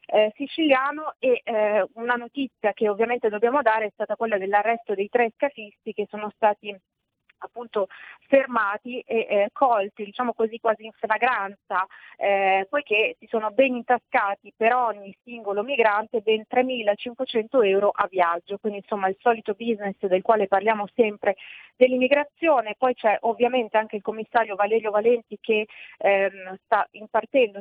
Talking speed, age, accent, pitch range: 145 wpm, 30-49, native, 205-235 Hz